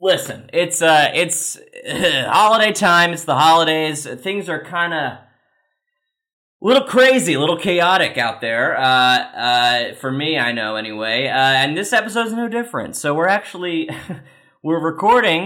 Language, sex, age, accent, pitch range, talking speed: English, male, 20-39, American, 130-175 Hz, 160 wpm